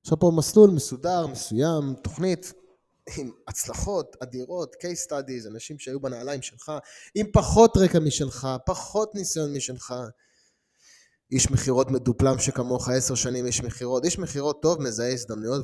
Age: 20-39